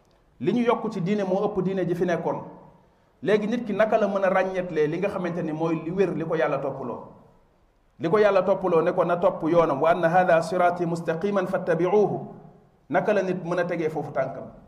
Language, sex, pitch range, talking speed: French, male, 155-185 Hz, 90 wpm